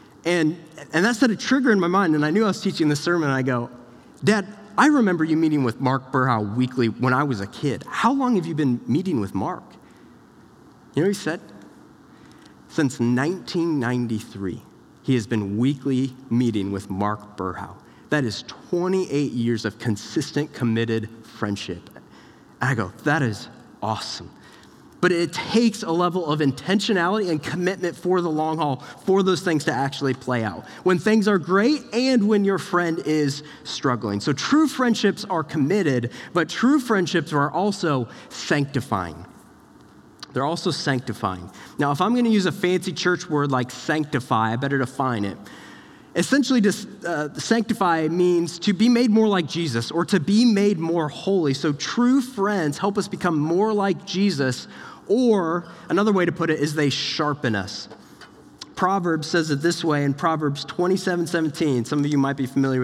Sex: male